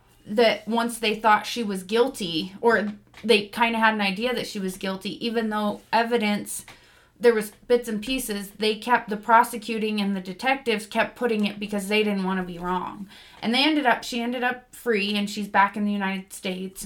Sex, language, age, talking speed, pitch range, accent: female, English, 30-49, 205 wpm, 195-235 Hz, American